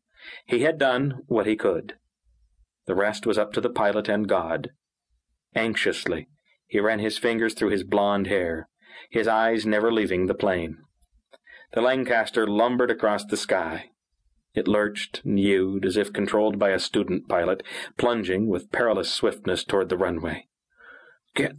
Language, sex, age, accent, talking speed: English, male, 40-59, American, 150 wpm